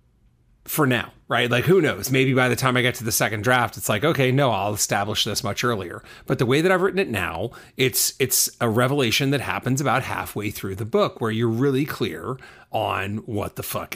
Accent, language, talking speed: American, English, 225 wpm